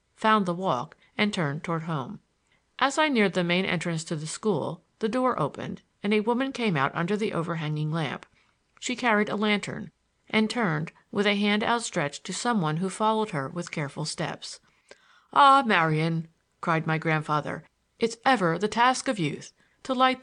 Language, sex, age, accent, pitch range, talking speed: English, female, 50-69, American, 165-215 Hz, 180 wpm